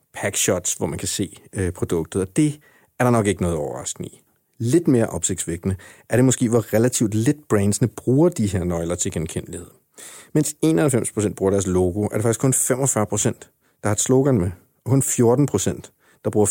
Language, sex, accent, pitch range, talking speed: Danish, male, native, 100-125 Hz, 190 wpm